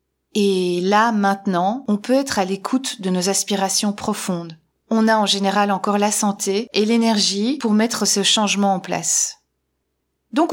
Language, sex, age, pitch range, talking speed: French, female, 30-49, 195-235 Hz, 160 wpm